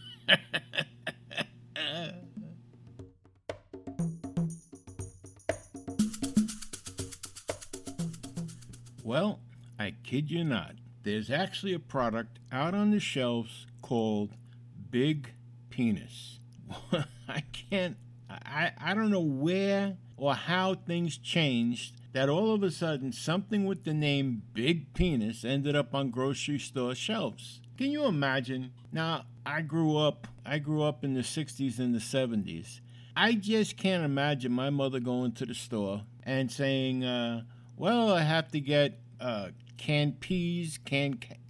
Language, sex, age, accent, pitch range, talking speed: English, male, 60-79, American, 120-170 Hz, 120 wpm